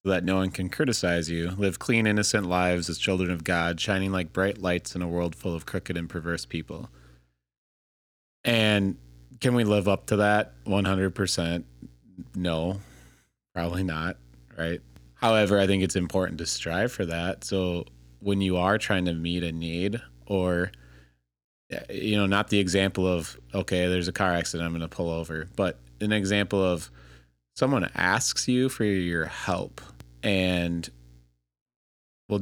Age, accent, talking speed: 30-49, American, 160 wpm